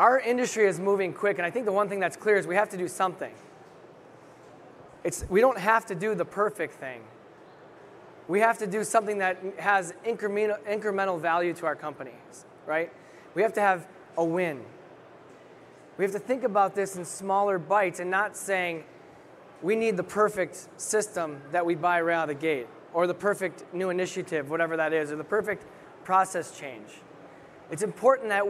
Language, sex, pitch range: English, male, 165-205 Hz